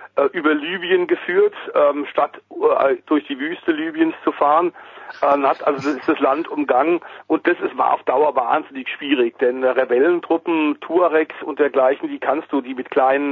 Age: 40-59